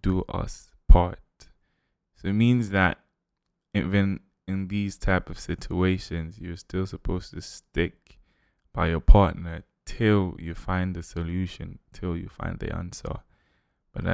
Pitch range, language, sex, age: 85-95 Hz, English, male, 20-39